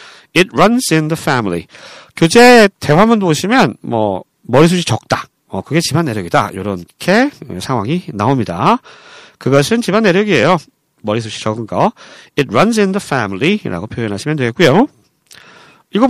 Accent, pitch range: native, 140-205 Hz